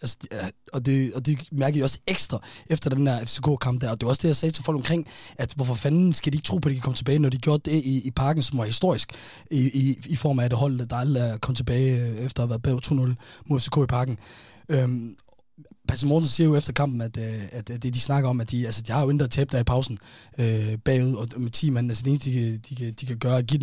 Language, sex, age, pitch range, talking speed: Danish, male, 20-39, 120-145 Hz, 275 wpm